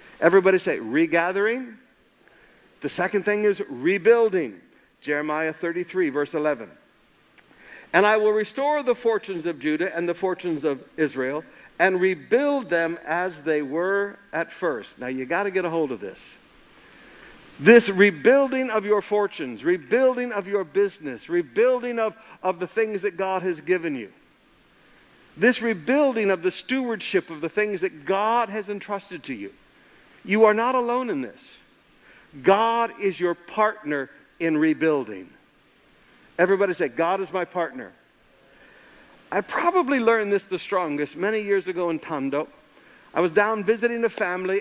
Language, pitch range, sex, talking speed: English, 170-225 Hz, male, 150 wpm